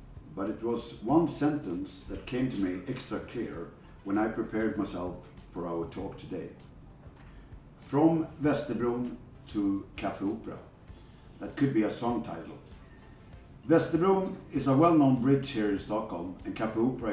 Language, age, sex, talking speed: Swedish, 50-69, male, 145 wpm